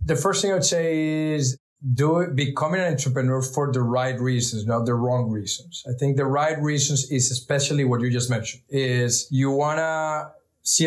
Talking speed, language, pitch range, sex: 195 wpm, English, 130-160 Hz, male